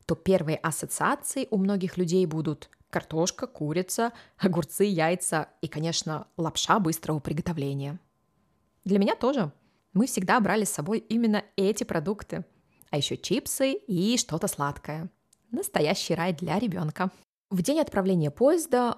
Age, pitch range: 20-39, 155-215 Hz